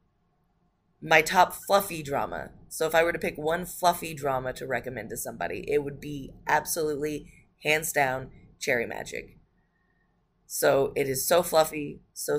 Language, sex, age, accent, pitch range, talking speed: English, female, 20-39, American, 140-175 Hz, 150 wpm